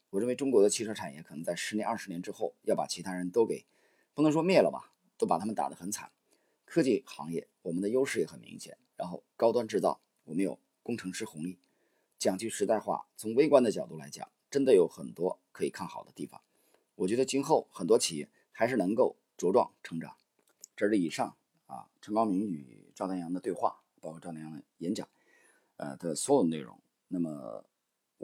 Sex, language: male, Chinese